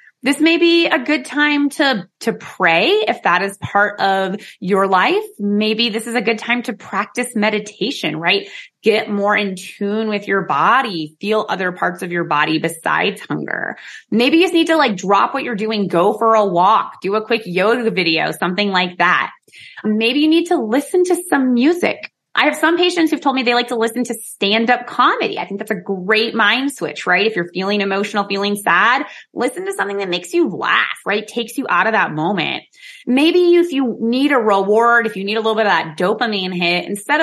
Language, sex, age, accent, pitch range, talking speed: English, female, 20-39, American, 185-255 Hz, 210 wpm